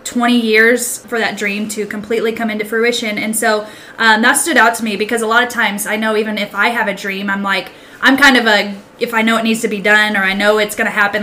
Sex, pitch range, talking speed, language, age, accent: female, 205-230 Hz, 280 wpm, English, 10-29, American